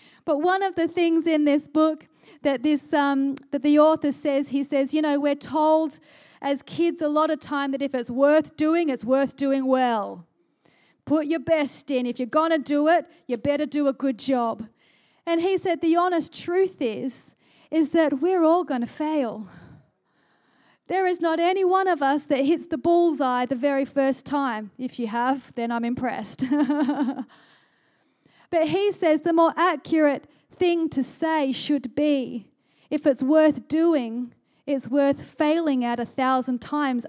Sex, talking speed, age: female, 175 wpm, 40-59